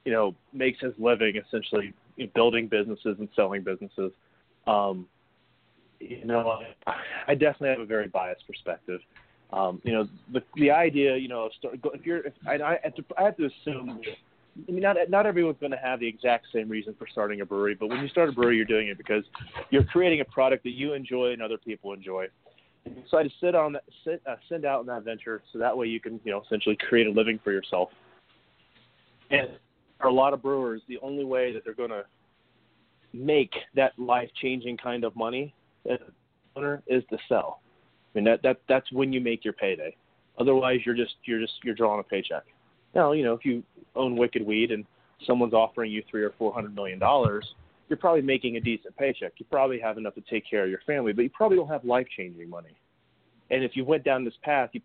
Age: 30-49